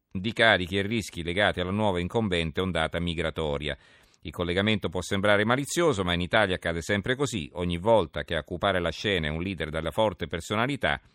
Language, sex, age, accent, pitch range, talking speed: Italian, male, 50-69, native, 85-100 Hz, 180 wpm